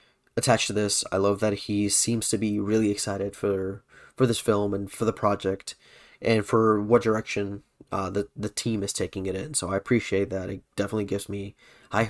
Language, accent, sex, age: English, American, male, 30-49